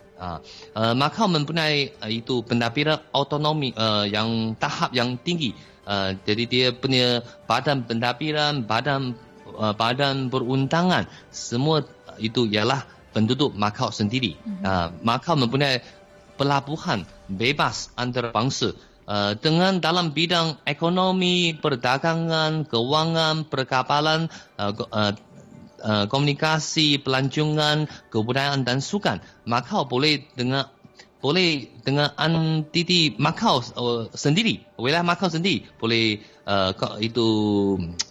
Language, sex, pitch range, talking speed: Malay, male, 110-155 Hz, 105 wpm